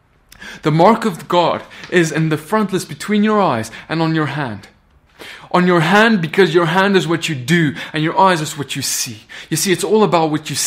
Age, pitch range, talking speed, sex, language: 20-39, 150-185 Hz, 225 wpm, male, English